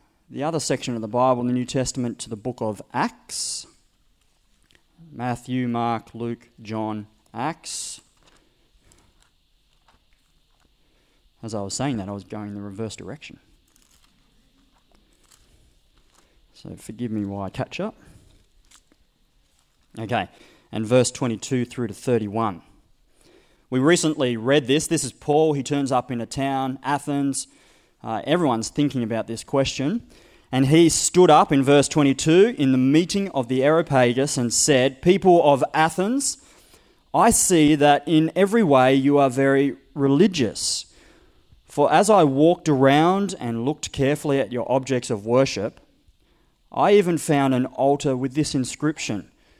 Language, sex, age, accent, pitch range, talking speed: English, male, 20-39, Australian, 120-155 Hz, 140 wpm